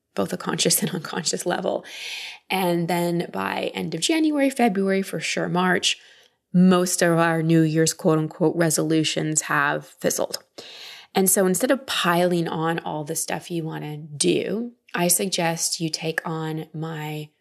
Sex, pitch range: female, 160-190 Hz